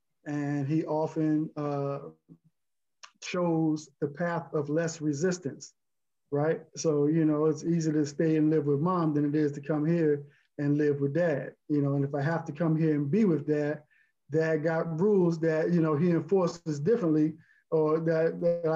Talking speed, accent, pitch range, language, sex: 180 wpm, American, 150-170 Hz, English, male